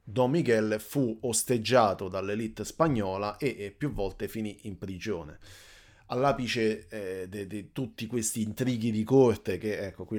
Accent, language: native, Italian